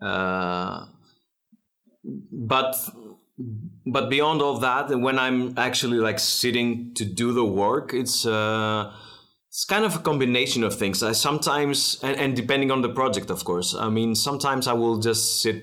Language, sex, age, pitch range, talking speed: English, male, 30-49, 100-120 Hz, 155 wpm